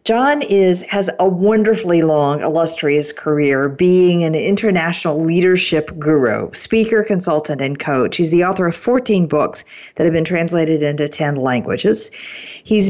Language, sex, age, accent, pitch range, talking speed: English, female, 50-69, American, 150-190 Hz, 145 wpm